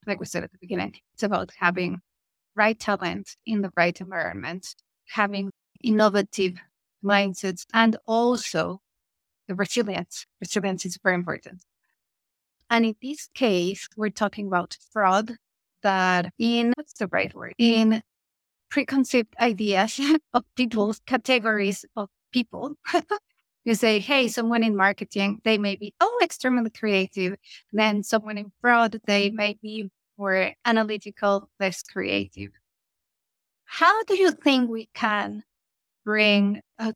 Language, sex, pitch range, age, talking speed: English, female, 190-225 Hz, 30-49, 130 wpm